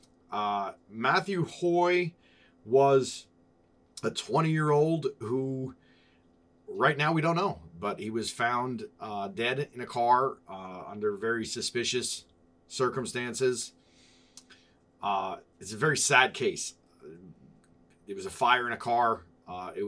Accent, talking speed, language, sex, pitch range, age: American, 130 wpm, English, male, 85-130 Hz, 30-49